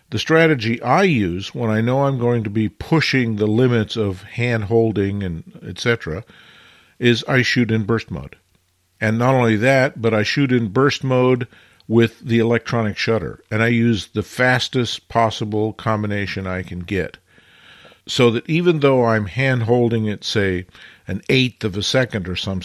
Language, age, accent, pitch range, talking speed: English, 50-69, American, 105-125 Hz, 170 wpm